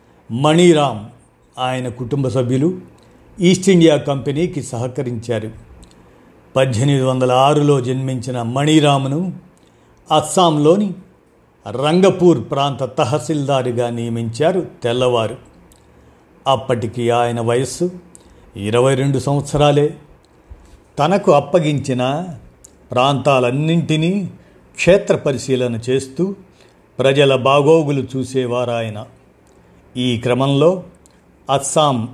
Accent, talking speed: native, 65 wpm